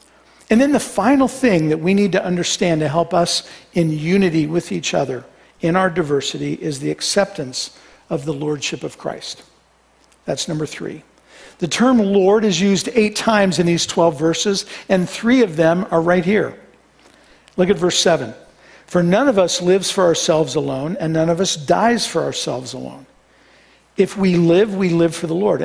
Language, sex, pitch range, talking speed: English, male, 165-205 Hz, 180 wpm